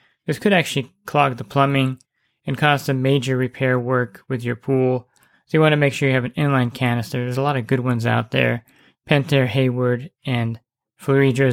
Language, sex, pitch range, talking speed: English, male, 125-140 Hz, 200 wpm